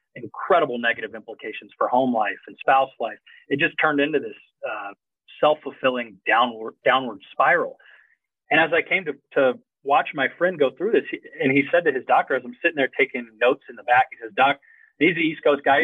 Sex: male